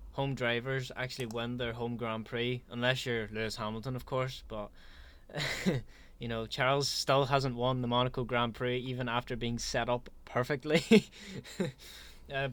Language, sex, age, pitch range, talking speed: English, male, 20-39, 110-130 Hz, 155 wpm